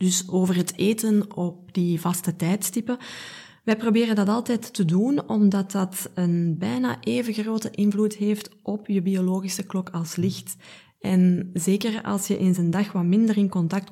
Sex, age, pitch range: female, 20-39, 180-220 Hz